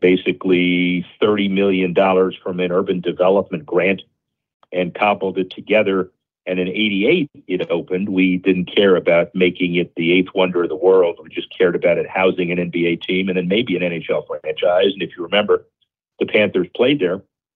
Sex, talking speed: male, 180 wpm